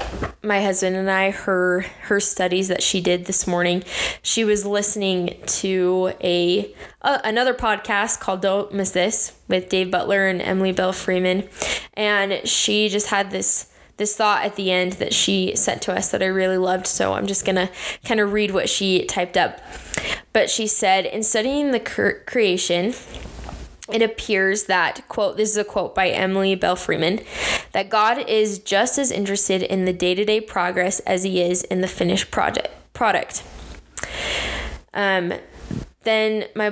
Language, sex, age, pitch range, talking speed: English, female, 10-29, 185-215 Hz, 170 wpm